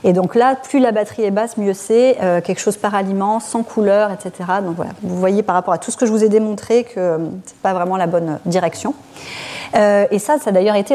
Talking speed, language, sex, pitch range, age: 260 wpm, French, female, 180-225 Hz, 30-49